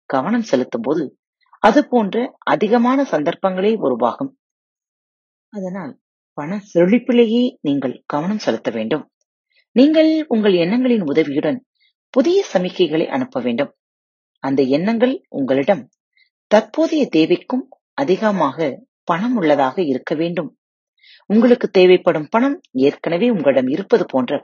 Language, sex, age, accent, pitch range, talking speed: Tamil, female, 30-49, native, 165-270 Hz, 90 wpm